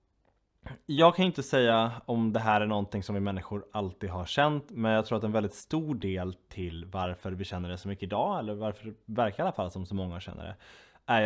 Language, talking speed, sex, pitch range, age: Swedish, 235 wpm, male, 95-115 Hz, 20-39